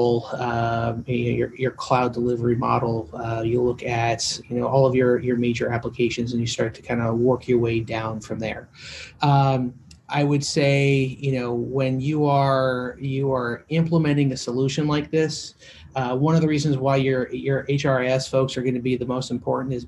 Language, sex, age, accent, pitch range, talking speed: English, male, 30-49, American, 120-140 Hz, 200 wpm